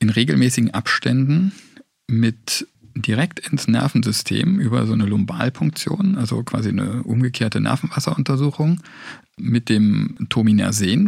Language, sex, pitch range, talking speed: German, male, 110-155 Hz, 105 wpm